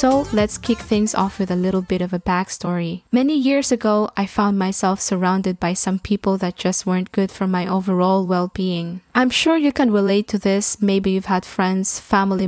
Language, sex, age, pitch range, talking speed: English, female, 20-39, 185-210 Hz, 200 wpm